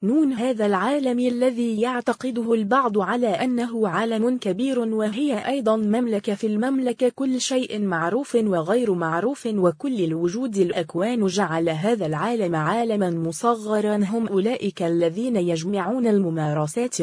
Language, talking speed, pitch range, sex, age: English, 115 wpm, 170-235 Hz, female, 20-39